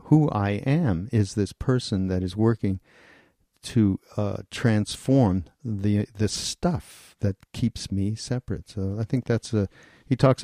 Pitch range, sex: 100-125 Hz, male